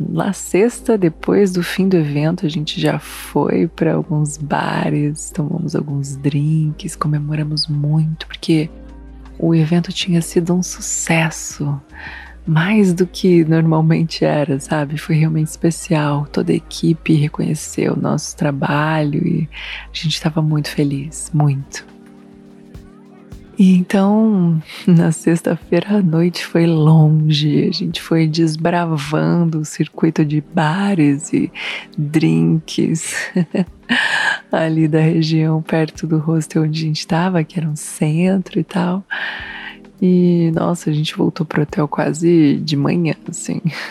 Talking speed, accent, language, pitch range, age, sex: 130 wpm, Brazilian, Portuguese, 155-175 Hz, 20-39, female